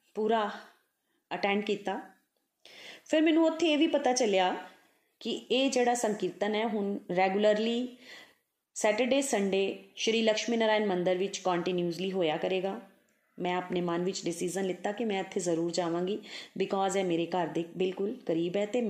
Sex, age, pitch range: female, 30-49, 180-230 Hz